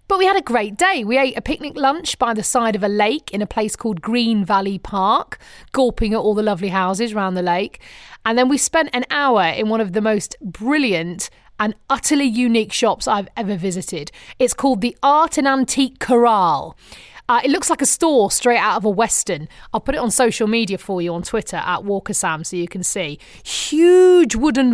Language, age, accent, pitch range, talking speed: English, 30-49, British, 210-275 Hz, 215 wpm